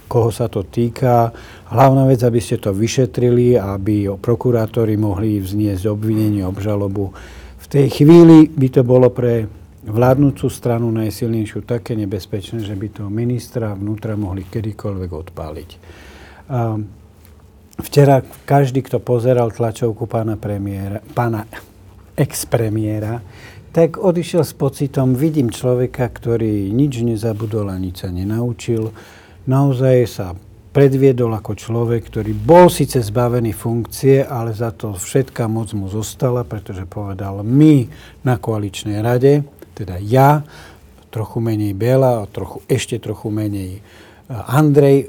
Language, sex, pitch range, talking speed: Slovak, male, 100-125 Hz, 120 wpm